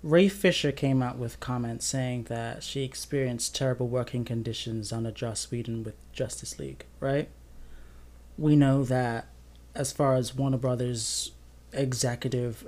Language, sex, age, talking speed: English, male, 20-39, 140 wpm